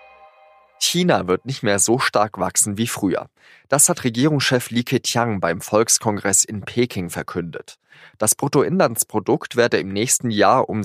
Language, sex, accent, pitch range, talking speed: German, male, German, 100-130 Hz, 145 wpm